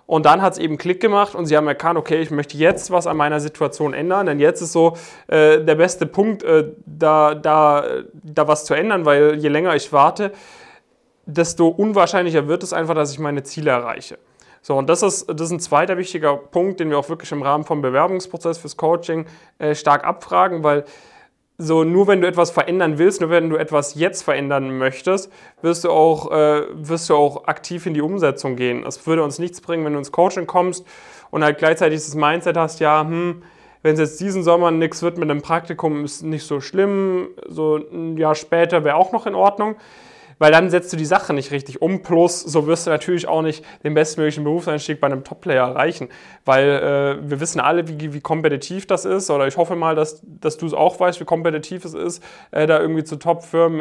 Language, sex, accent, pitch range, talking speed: German, male, German, 150-175 Hz, 215 wpm